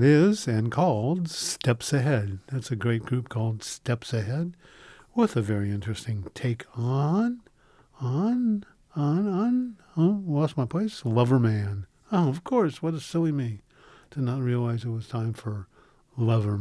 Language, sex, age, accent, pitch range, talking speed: English, male, 50-69, American, 115-155 Hz, 150 wpm